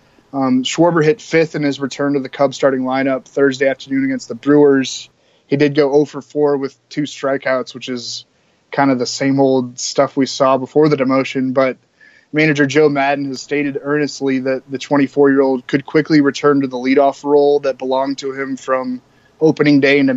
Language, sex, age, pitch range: English, male, 20-39, 130-145 Hz